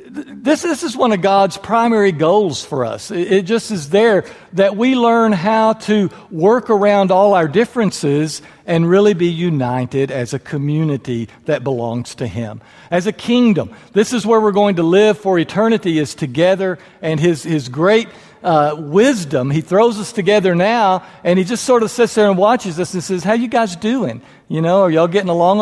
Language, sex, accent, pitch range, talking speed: English, male, American, 150-210 Hz, 195 wpm